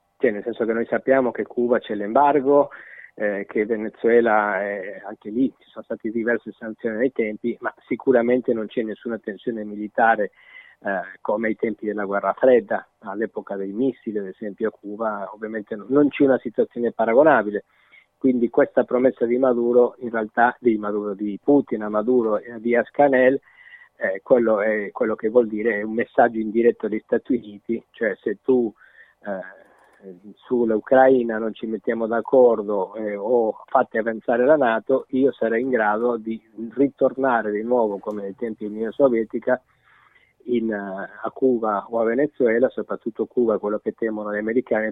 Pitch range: 105-130 Hz